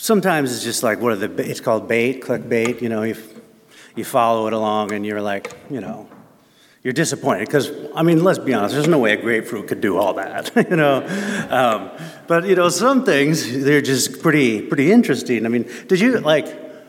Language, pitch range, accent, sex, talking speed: English, 135-200 Hz, American, male, 210 wpm